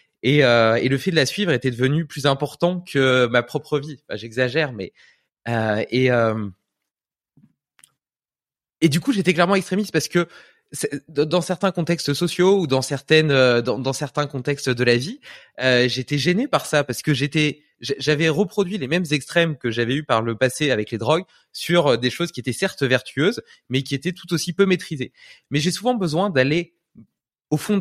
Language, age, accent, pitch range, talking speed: French, 20-39, French, 125-170 Hz, 190 wpm